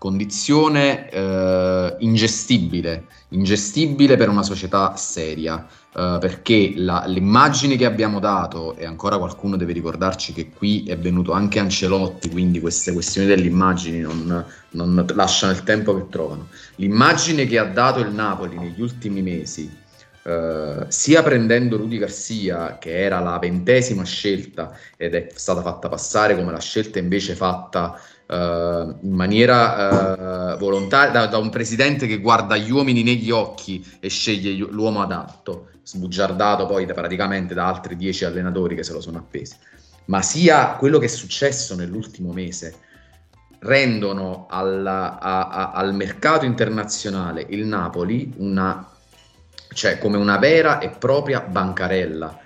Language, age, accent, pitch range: Italian, 30-49, native, 90-110 Hz